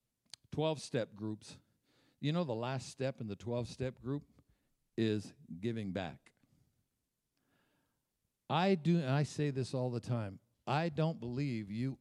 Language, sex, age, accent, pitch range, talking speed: English, male, 60-79, American, 120-170 Hz, 135 wpm